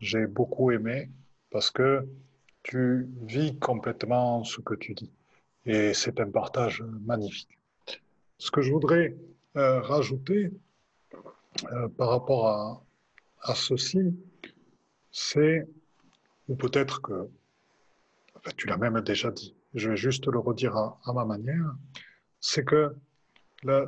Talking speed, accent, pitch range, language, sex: 130 wpm, French, 120-150 Hz, French, male